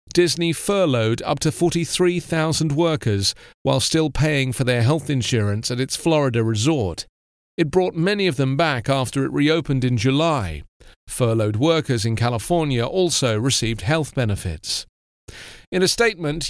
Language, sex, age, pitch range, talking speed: English, male, 40-59, 115-165 Hz, 140 wpm